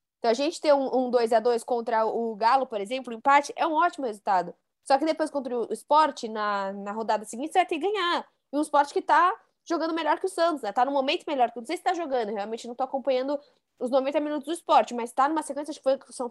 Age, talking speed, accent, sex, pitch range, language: 20-39, 265 wpm, Brazilian, female, 220-280 Hz, Portuguese